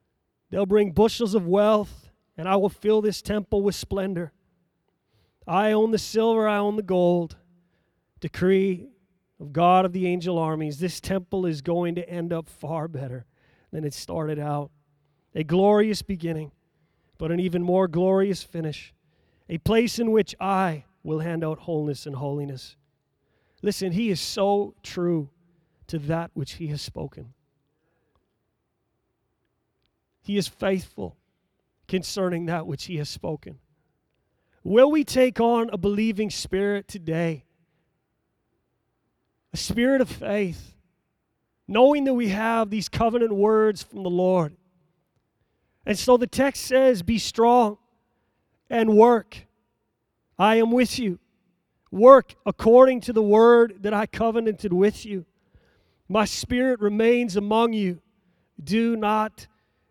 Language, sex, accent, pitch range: English, male, American, 160-215 Hz